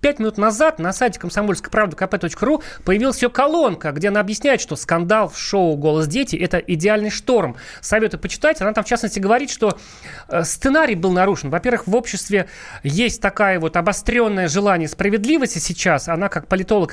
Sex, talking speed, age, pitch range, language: male, 165 wpm, 30-49, 170-230 Hz, Russian